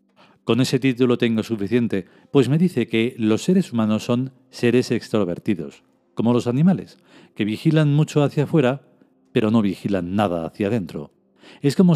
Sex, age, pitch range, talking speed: male, 40-59, 110-140 Hz, 155 wpm